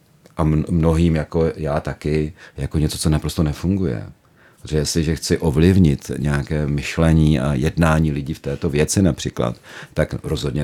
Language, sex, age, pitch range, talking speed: Czech, male, 40-59, 75-90 Hz, 145 wpm